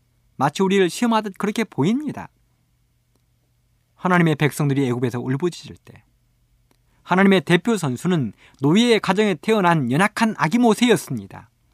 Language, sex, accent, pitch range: Korean, male, native, 125-205 Hz